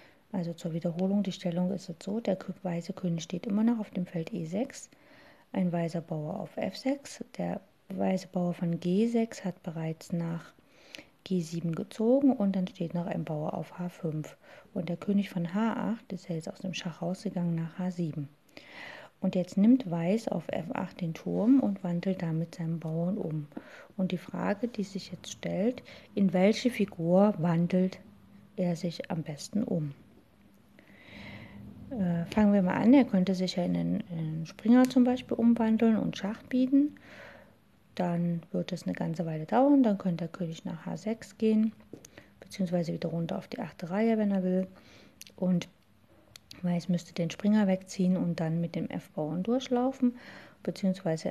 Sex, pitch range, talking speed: female, 170-210 Hz, 165 wpm